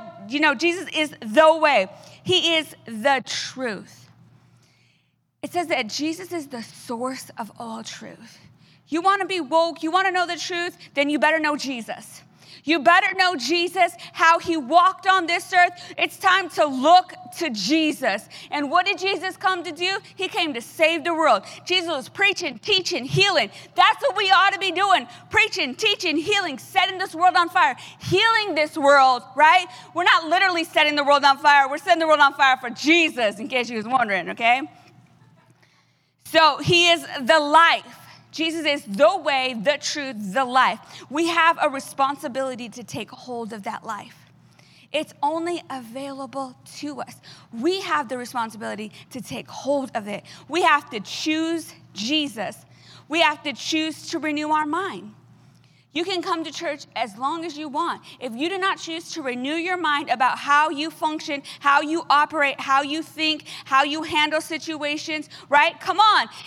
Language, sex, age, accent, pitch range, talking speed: English, female, 40-59, American, 280-350 Hz, 180 wpm